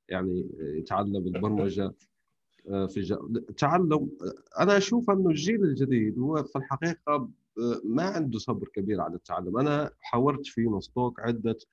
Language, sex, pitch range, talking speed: Arabic, male, 100-140 Hz, 130 wpm